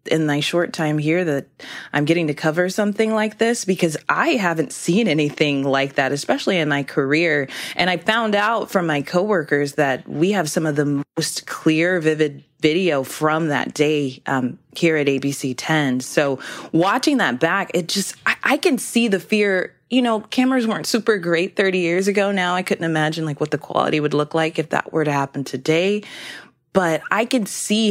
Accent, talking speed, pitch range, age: American, 195 wpm, 140-180 Hz, 20-39